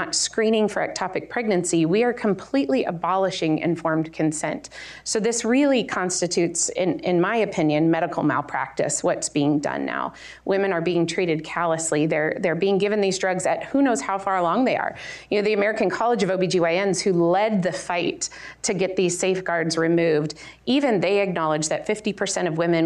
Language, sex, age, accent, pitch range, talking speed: English, female, 30-49, American, 165-200 Hz, 175 wpm